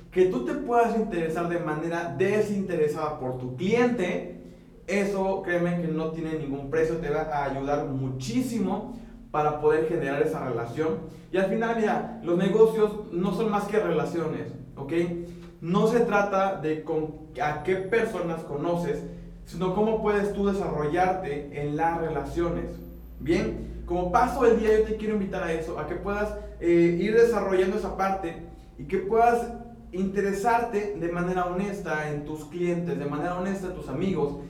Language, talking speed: Spanish, 160 wpm